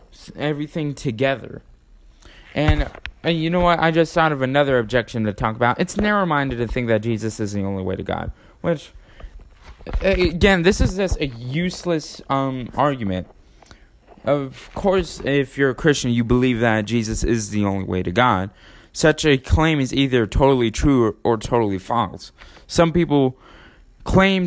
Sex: male